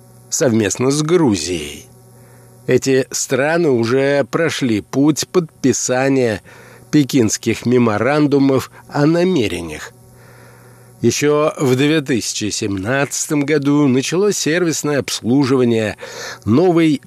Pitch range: 120-150 Hz